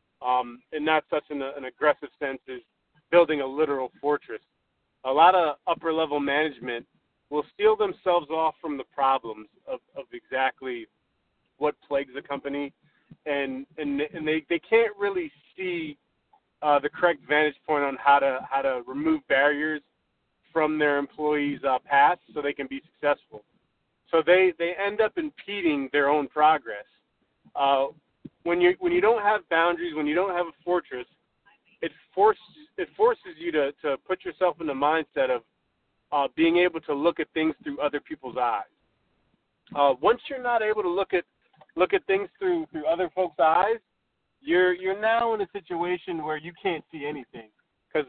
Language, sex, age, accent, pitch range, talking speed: English, male, 30-49, American, 145-190 Hz, 170 wpm